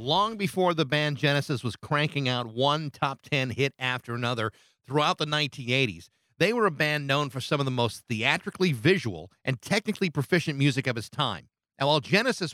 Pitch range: 130-170 Hz